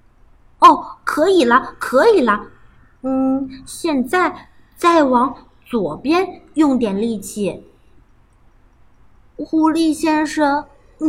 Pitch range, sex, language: 235-330 Hz, female, Chinese